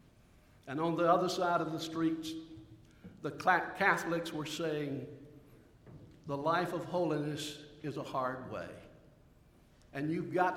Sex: male